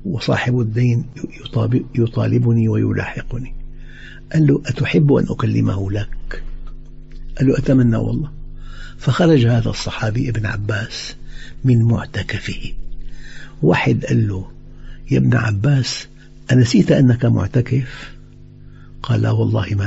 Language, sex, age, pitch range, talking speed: Arabic, male, 60-79, 115-135 Hz, 105 wpm